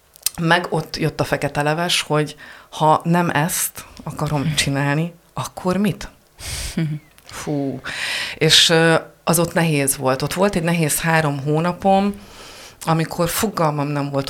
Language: Hungarian